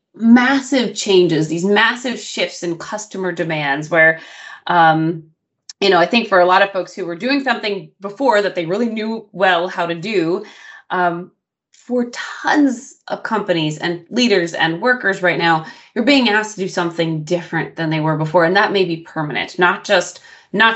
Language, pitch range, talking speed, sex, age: English, 165-210 Hz, 180 wpm, female, 20-39